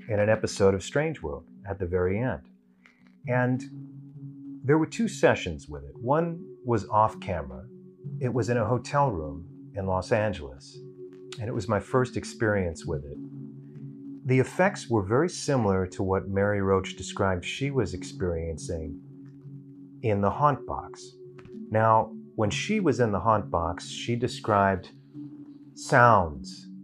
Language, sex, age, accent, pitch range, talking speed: English, male, 30-49, American, 90-130 Hz, 150 wpm